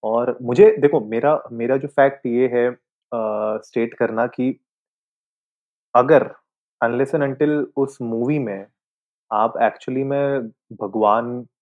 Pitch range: 115-145 Hz